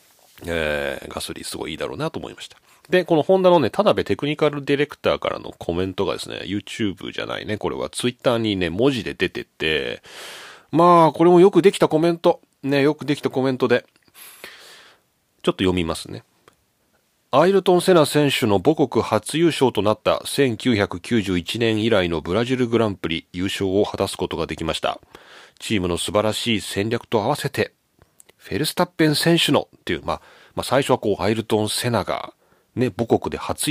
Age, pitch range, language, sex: 40-59, 105-155 Hz, Japanese, male